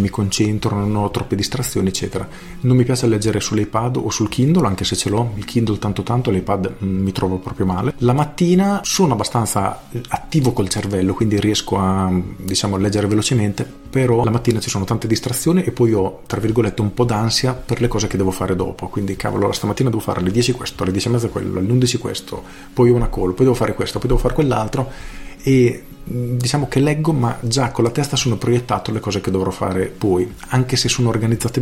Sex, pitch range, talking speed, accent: male, 95-120 Hz, 215 wpm, native